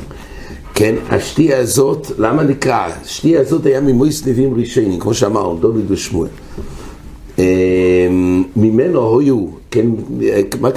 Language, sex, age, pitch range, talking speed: English, male, 60-79, 110-150 Hz, 70 wpm